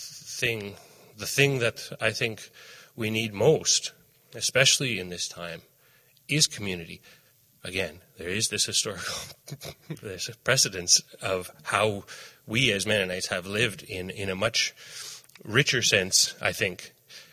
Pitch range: 90-130 Hz